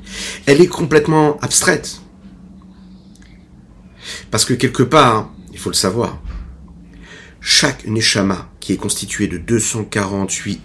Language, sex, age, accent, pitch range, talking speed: French, male, 50-69, French, 85-140 Hz, 115 wpm